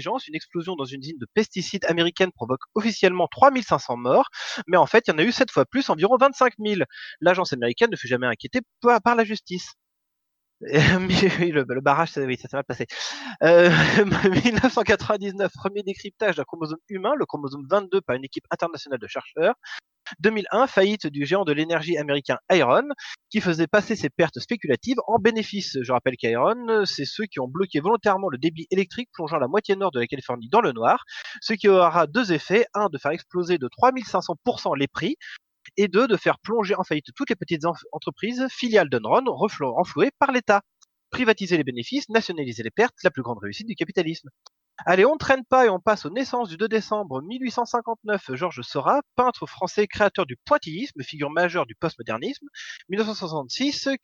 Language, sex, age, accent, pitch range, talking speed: French, male, 20-39, French, 155-225 Hz, 185 wpm